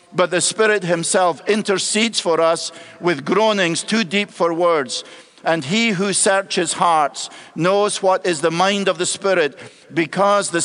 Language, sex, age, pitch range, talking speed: English, male, 50-69, 170-220 Hz, 160 wpm